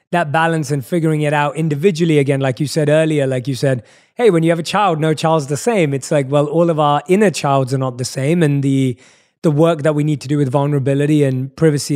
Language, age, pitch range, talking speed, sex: English, 20-39, 135-165 Hz, 250 wpm, male